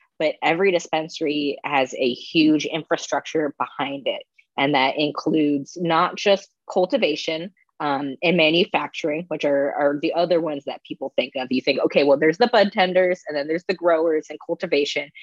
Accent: American